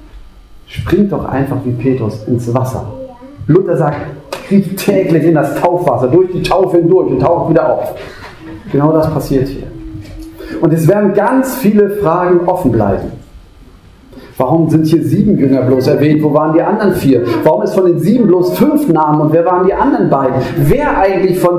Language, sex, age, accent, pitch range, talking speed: German, male, 40-59, German, 130-190 Hz, 175 wpm